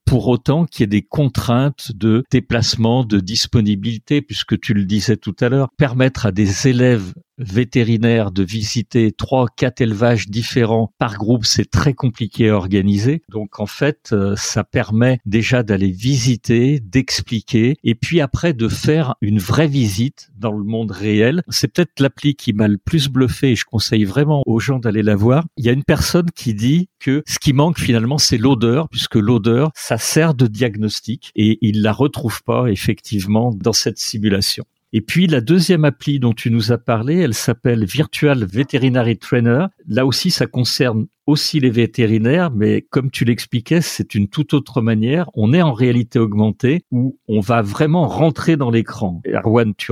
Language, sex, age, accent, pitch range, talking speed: French, male, 50-69, French, 110-140 Hz, 180 wpm